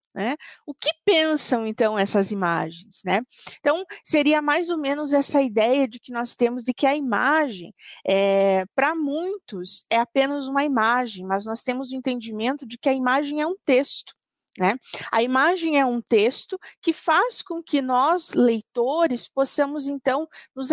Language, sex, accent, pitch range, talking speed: Portuguese, female, Brazilian, 225-285 Hz, 160 wpm